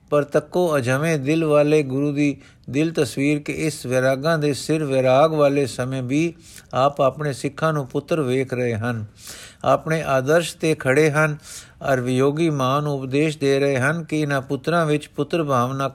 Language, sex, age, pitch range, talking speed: Punjabi, male, 50-69, 130-155 Hz, 165 wpm